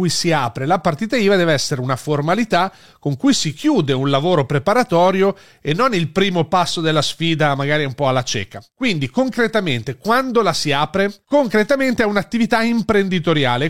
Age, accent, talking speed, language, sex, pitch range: 40-59, native, 165 wpm, Italian, male, 145-195 Hz